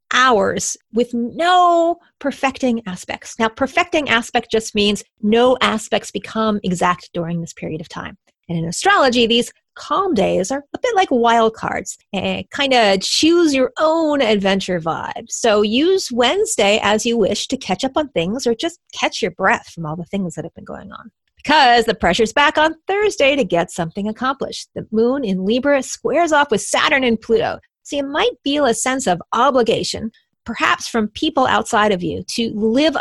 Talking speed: 180 wpm